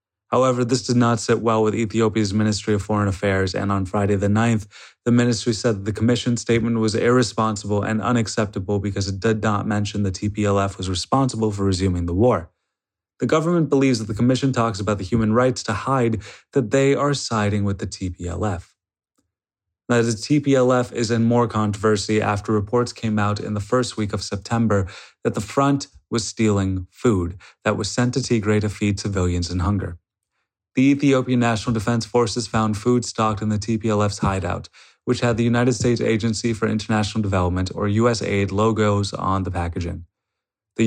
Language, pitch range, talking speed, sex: English, 100-120 Hz, 180 wpm, male